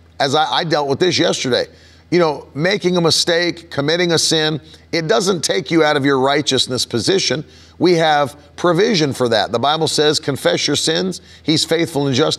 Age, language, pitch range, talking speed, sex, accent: 40-59, English, 120-175 Hz, 190 wpm, male, American